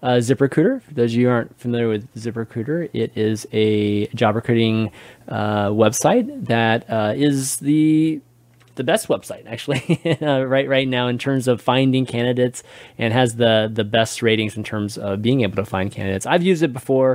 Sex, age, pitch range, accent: male, 30-49, 110-130 Hz, American